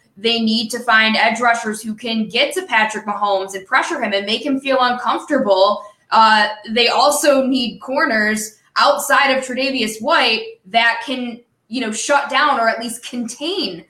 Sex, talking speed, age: female, 170 wpm, 20-39